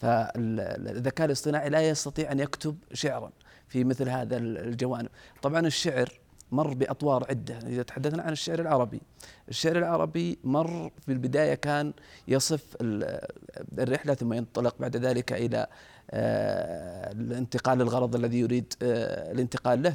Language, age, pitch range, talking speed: Arabic, 40-59, 125-155 Hz, 120 wpm